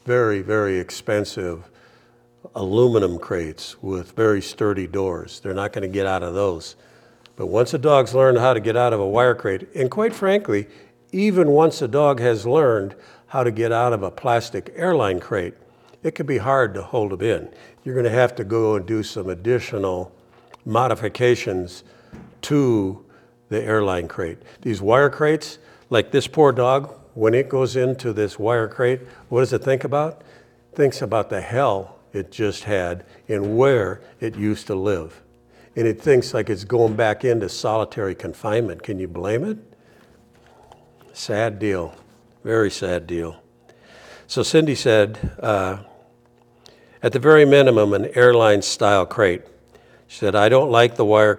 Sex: male